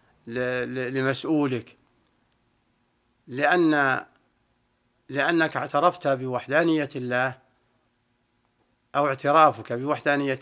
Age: 60-79